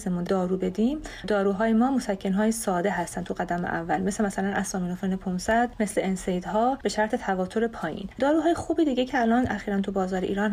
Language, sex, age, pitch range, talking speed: Persian, female, 30-49, 190-245 Hz, 180 wpm